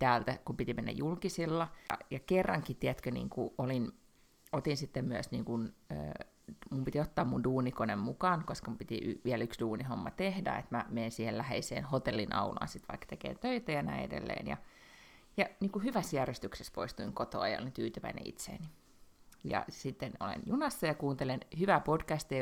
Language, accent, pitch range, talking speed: Finnish, native, 125-195 Hz, 165 wpm